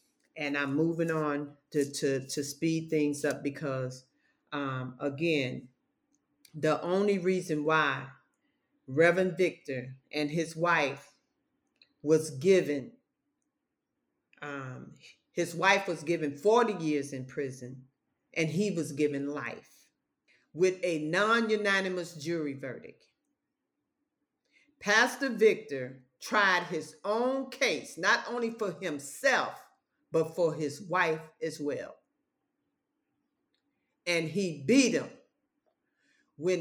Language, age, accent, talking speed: English, 40-59, American, 105 wpm